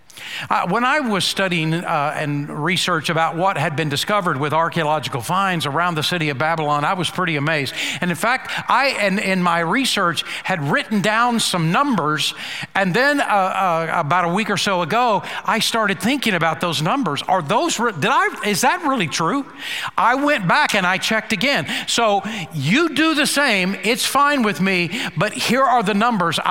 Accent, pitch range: American, 170-235 Hz